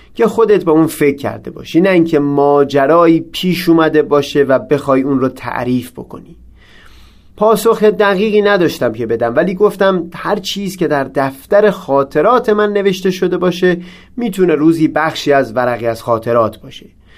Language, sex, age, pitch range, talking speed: Persian, male, 30-49, 140-185 Hz, 155 wpm